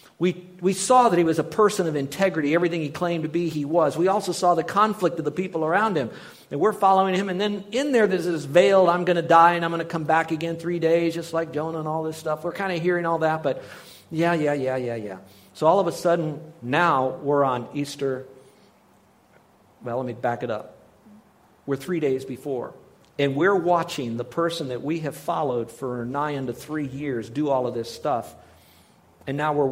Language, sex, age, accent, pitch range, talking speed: English, male, 50-69, American, 140-170 Hz, 225 wpm